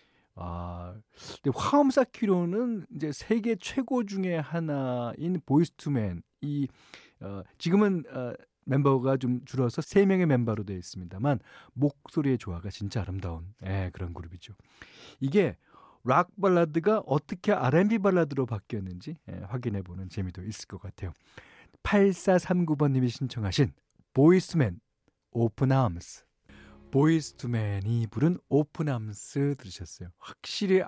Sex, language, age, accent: male, Korean, 40-59, native